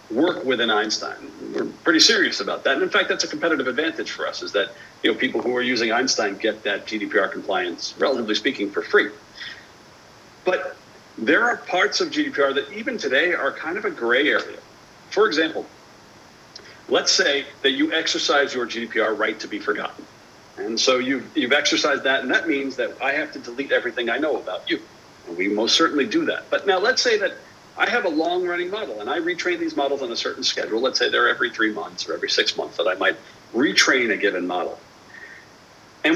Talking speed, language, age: 205 wpm, English, 50-69